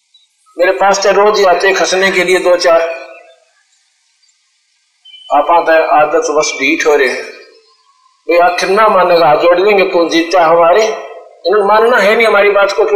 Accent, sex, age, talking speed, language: native, male, 50-69, 50 wpm, Hindi